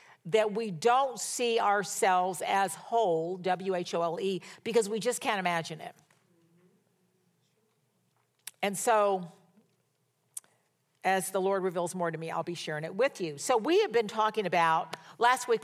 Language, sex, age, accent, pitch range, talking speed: English, female, 50-69, American, 165-210 Hz, 140 wpm